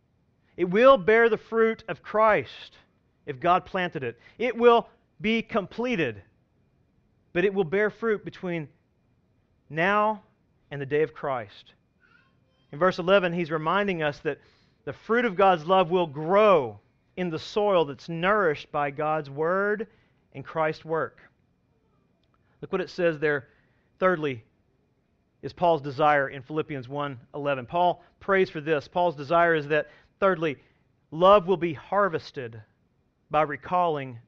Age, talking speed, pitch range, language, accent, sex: 40-59, 140 wpm, 150-195 Hz, English, American, male